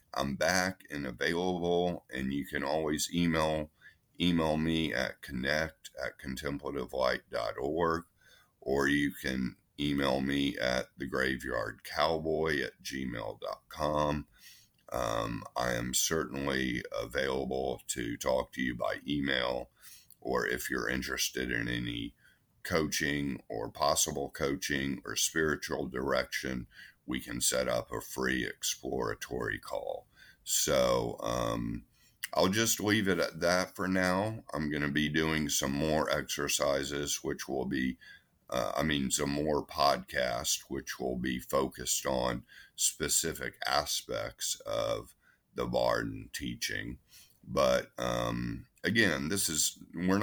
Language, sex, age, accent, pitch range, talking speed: English, male, 50-69, American, 65-80 Hz, 120 wpm